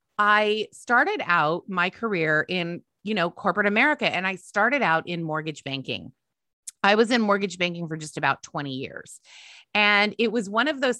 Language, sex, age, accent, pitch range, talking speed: English, female, 30-49, American, 175-230 Hz, 180 wpm